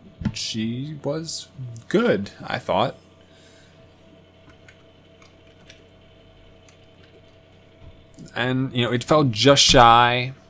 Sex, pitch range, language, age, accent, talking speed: male, 95-115 Hz, English, 20-39, American, 70 wpm